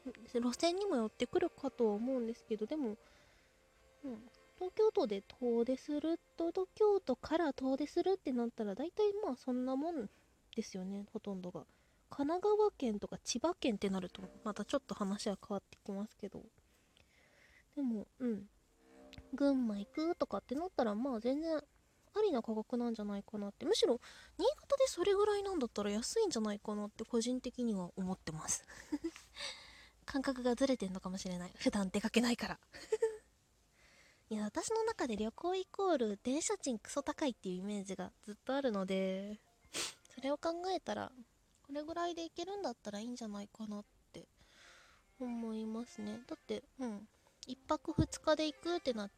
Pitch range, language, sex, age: 210-295 Hz, Japanese, female, 20-39